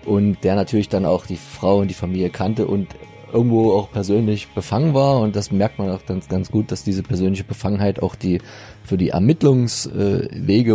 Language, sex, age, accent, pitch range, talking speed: German, male, 30-49, German, 90-110 Hz, 190 wpm